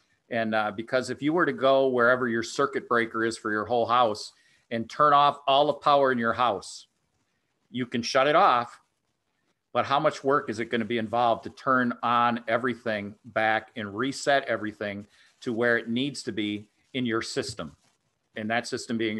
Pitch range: 115-130 Hz